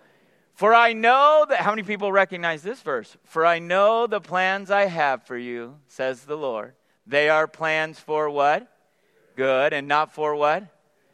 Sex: male